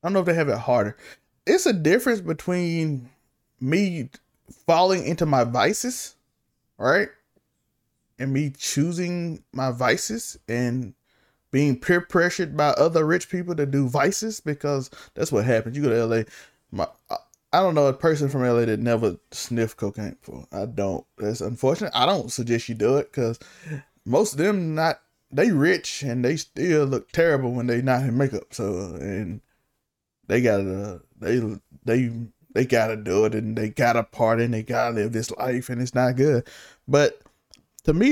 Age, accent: 20-39, American